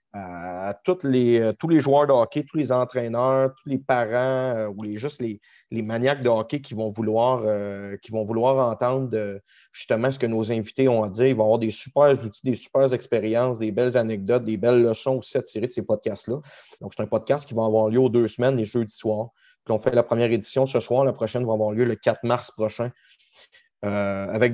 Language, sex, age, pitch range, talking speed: French, male, 30-49, 110-135 Hz, 225 wpm